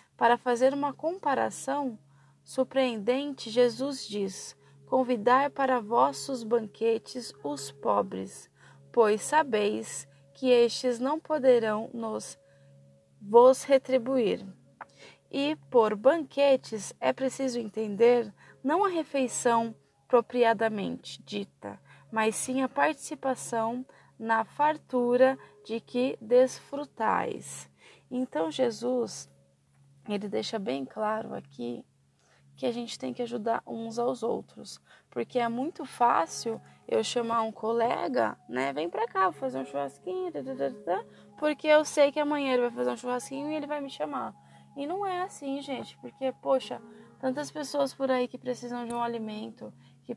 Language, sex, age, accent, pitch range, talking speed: Portuguese, female, 20-39, Brazilian, 200-260 Hz, 130 wpm